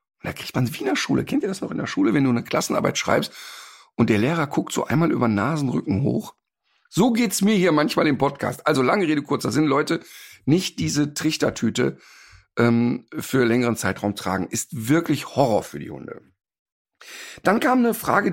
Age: 50-69